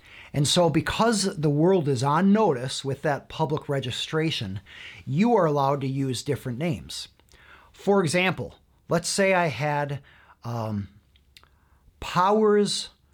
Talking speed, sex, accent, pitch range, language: 125 wpm, male, American, 105-160 Hz, English